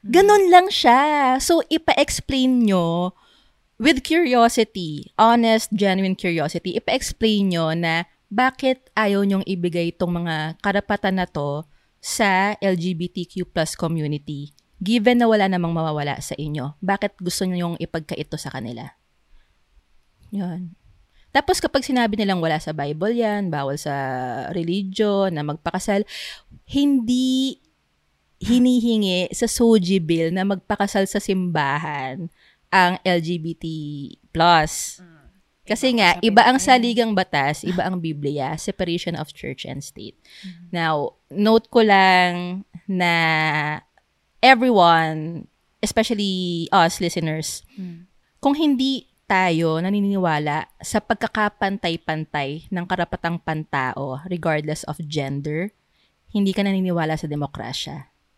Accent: Filipino